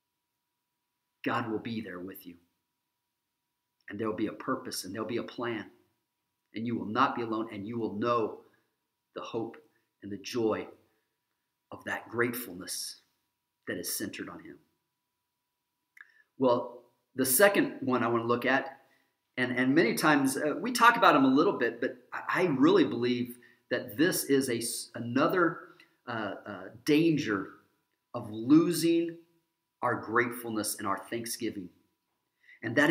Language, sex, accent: English, male, American